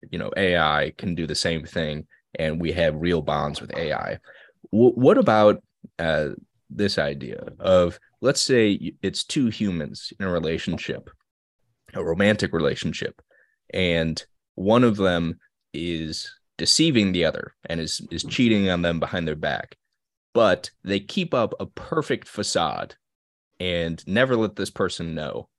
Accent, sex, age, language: American, male, 20-39, English